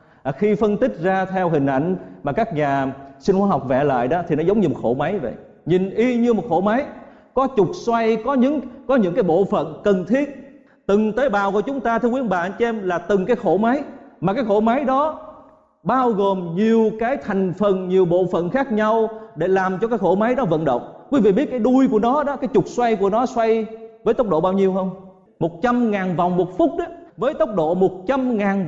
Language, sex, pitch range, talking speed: Vietnamese, male, 180-245 Hz, 240 wpm